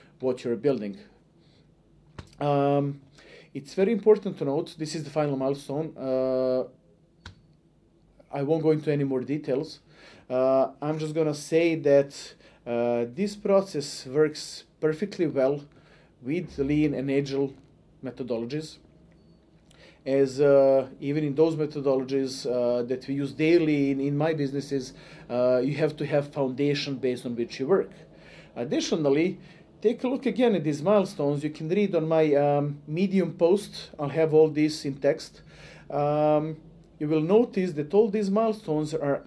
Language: English